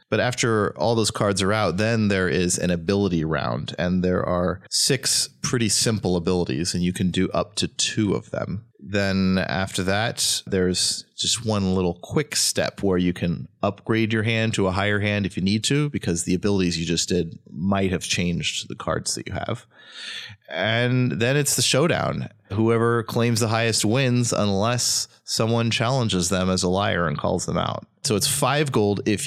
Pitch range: 90-115 Hz